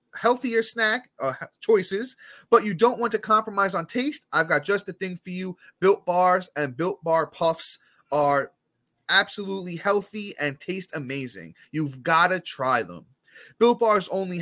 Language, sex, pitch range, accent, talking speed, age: English, male, 145-200 Hz, American, 160 wpm, 30-49